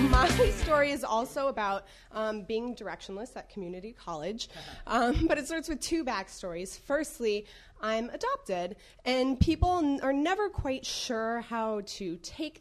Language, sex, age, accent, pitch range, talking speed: English, female, 20-39, American, 185-245 Hz, 145 wpm